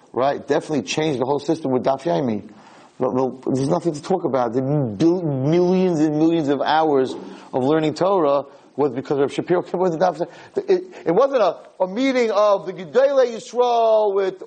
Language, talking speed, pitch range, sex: English, 185 wpm, 145-210 Hz, male